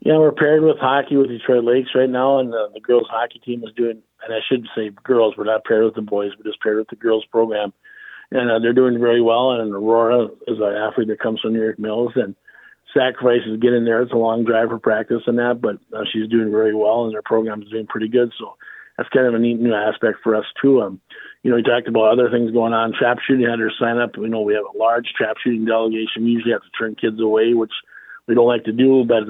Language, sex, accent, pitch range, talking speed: English, male, American, 110-120 Hz, 265 wpm